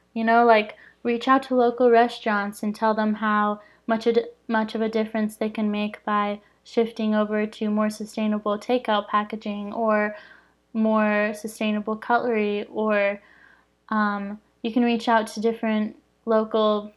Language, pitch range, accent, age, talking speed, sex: English, 210-235 Hz, American, 10-29, 150 wpm, female